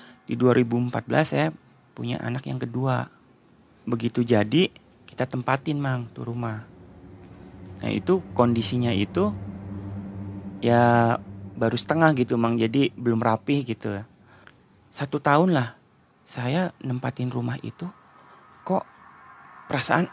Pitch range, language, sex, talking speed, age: 120-170 Hz, Indonesian, male, 105 wpm, 30-49